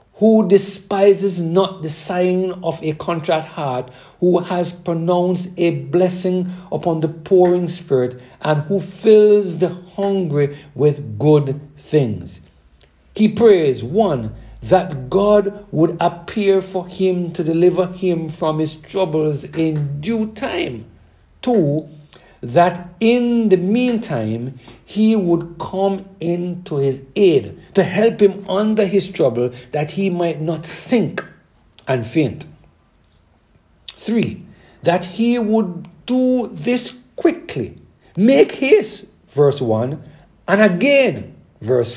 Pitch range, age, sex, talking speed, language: 150-200 Hz, 60-79, male, 115 wpm, English